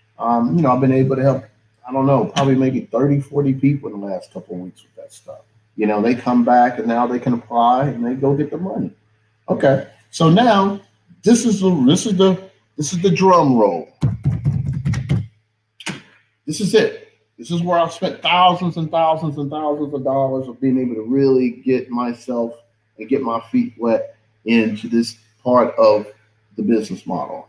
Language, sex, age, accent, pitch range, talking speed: English, male, 30-49, American, 110-180 Hz, 195 wpm